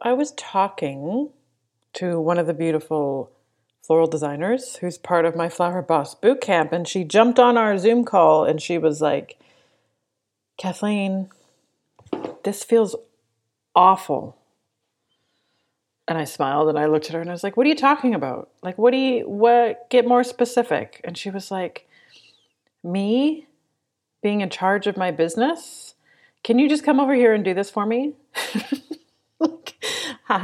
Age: 40-59